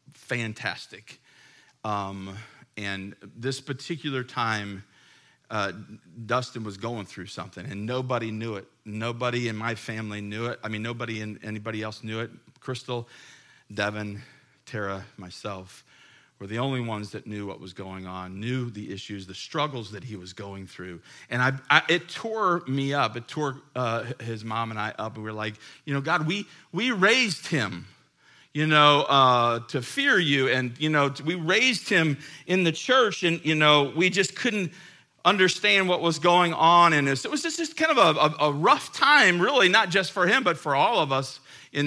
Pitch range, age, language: 110-150 Hz, 40-59, English